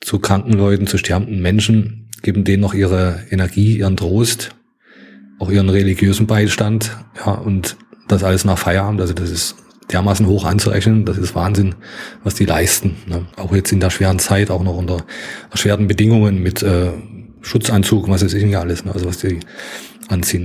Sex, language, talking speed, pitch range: male, German, 175 wpm, 95-105 Hz